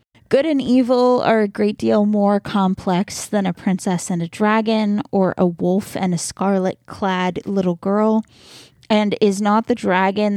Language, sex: English, female